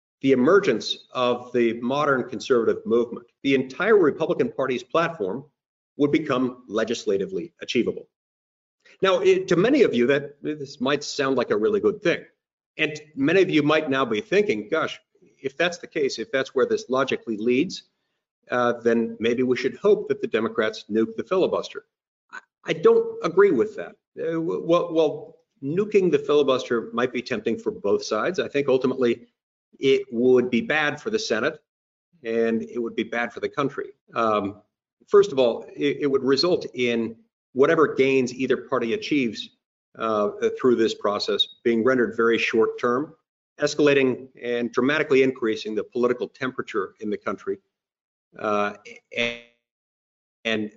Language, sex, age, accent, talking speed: English, male, 50-69, American, 155 wpm